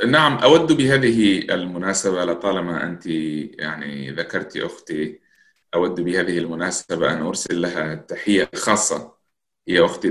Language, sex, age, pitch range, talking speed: Arabic, male, 30-49, 80-100 Hz, 115 wpm